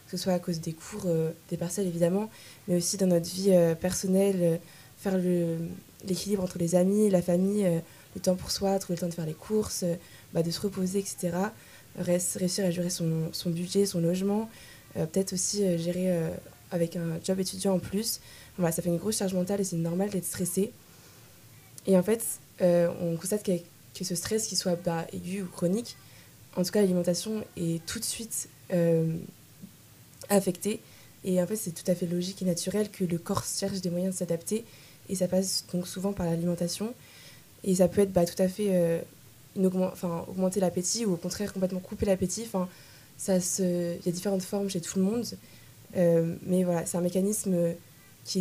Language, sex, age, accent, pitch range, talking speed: French, female, 20-39, French, 170-195 Hz, 210 wpm